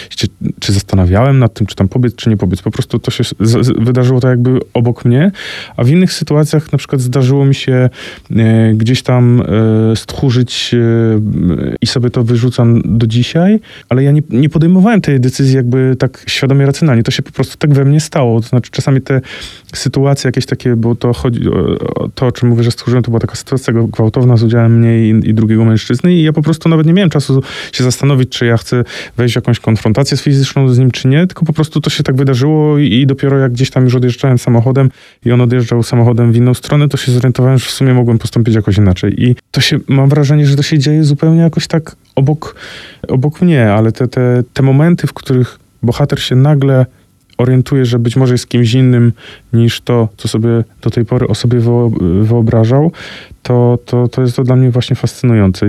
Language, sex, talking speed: Polish, male, 210 wpm